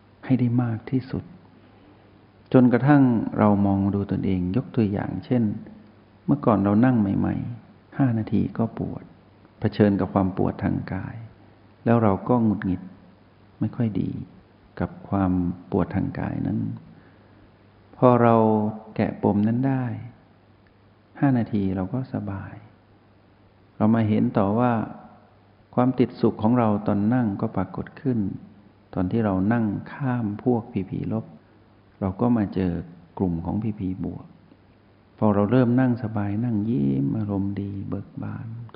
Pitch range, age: 95-115 Hz, 60-79